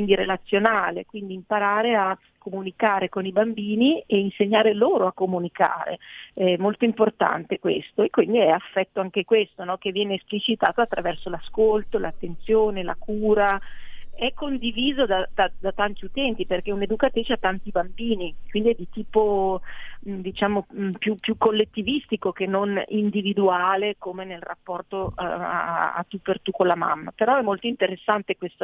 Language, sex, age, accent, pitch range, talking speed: Italian, female, 40-59, native, 185-220 Hz, 155 wpm